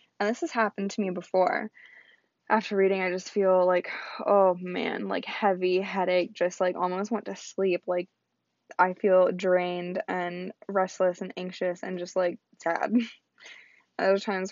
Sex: female